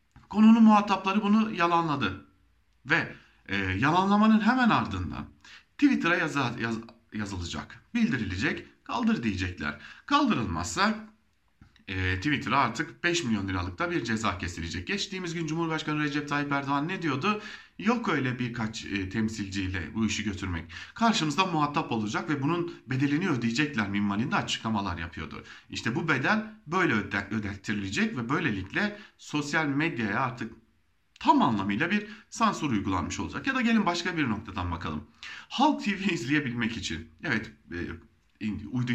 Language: German